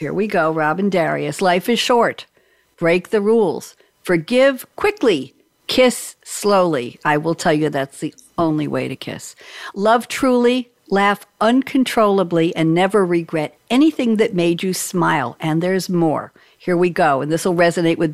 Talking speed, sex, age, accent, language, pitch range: 160 wpm, female, 60-79, American, English, 165-225 Hz